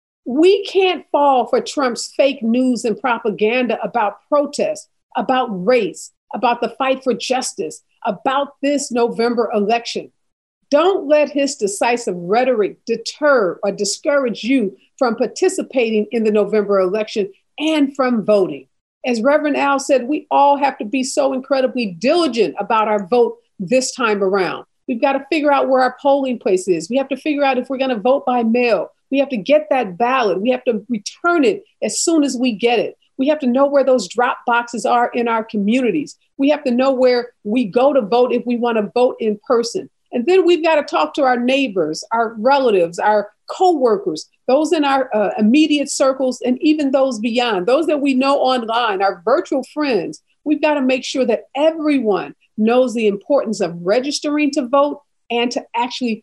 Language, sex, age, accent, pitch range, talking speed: English, female, 50-69, American, 230-285 Hz, 185 wpm